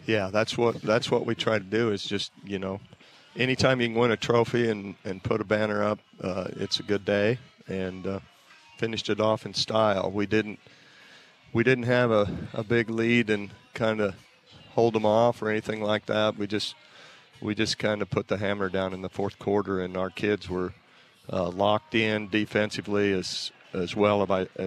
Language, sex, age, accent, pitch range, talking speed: English, male, 40-59, American, 95-110 Hz, 200 wpm